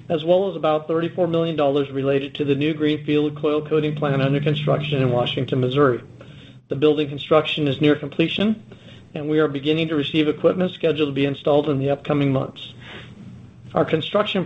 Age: 40-59